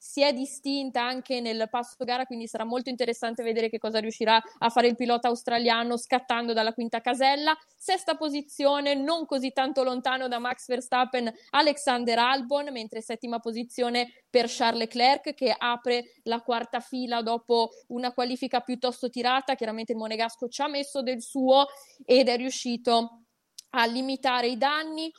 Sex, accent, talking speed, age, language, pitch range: female, native, 155 wpm, 20-39, Italian, 235-275 Hz